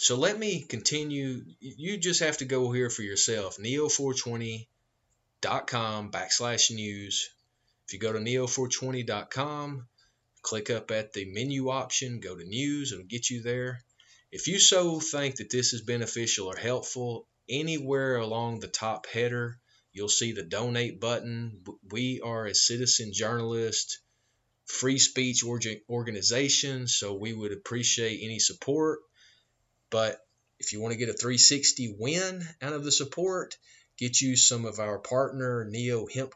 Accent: American